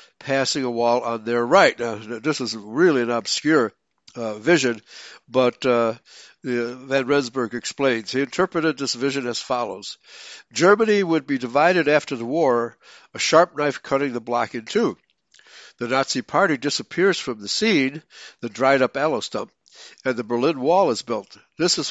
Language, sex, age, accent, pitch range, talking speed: English, male, 60-79, American, 120-145 Hz, 160 wpm